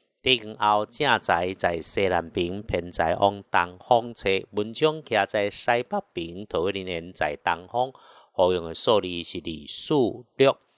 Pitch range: 95-120 Hz